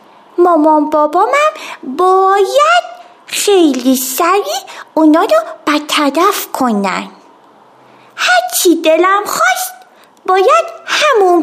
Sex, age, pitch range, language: female, 30-49, 275-370 Hz, Persian